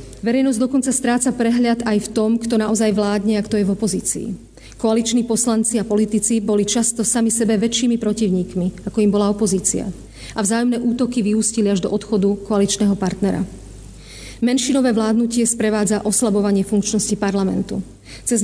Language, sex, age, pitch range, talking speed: Slovak, female, 40-59, 205-230 Hz, 145 wpm